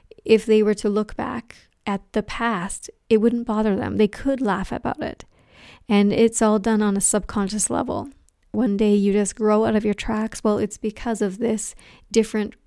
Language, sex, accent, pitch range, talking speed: English, female, American, 205-225 Hz, 195 wpm